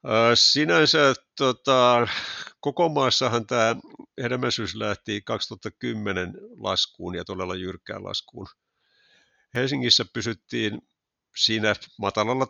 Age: 50-69